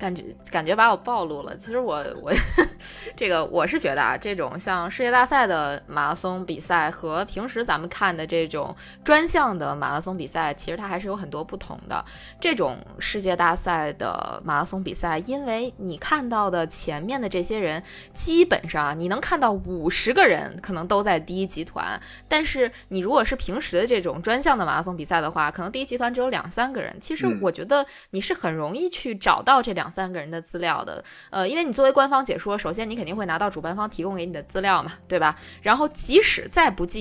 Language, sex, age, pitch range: Chinese, female, 20-39, 170-240 Hz